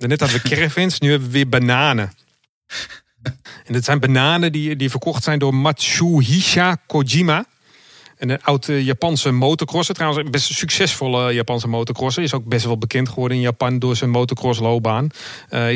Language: Dutch